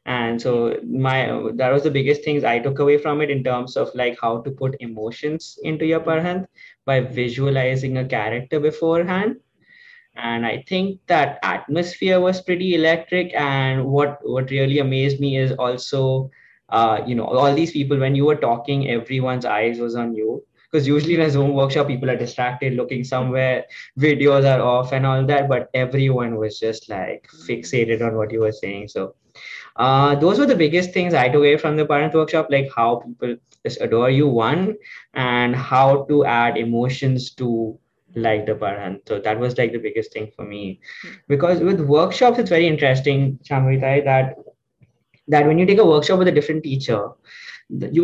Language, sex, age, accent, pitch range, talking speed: English, male, 20-39, Indian, 125-160 Hz, 180 wpm